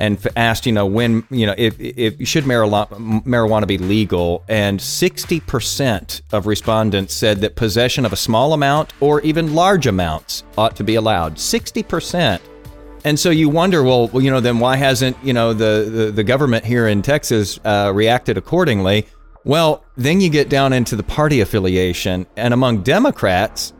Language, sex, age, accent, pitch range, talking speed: English, male, 40-59, American, 105-145 Hz, 180 wpm